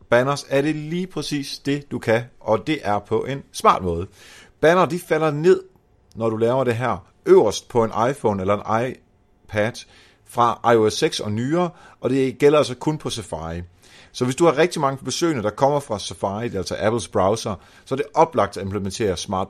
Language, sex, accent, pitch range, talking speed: Danish, male, native, 105-145 Hz, 195 wpm